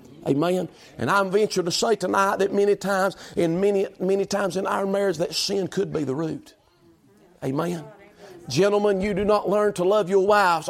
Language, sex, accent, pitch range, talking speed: English, male, American, 160-200 Hz, 185 wpm